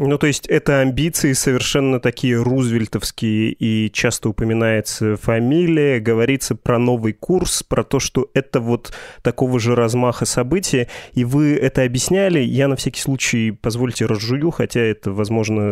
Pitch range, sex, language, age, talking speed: 115-140 Hz, male, Russian, 20-39, 145 wpm